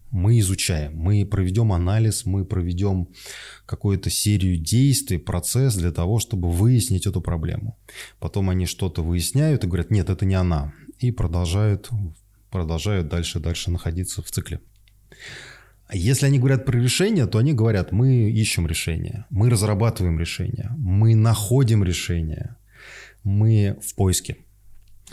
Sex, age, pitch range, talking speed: male, 20-39, 95-115 Hz, 130 wpm